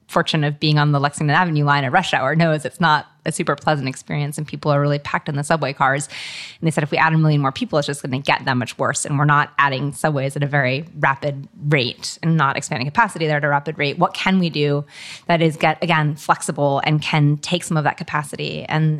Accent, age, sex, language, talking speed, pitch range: American, 20-39, female, English, 255 wpm, 150-165 Hz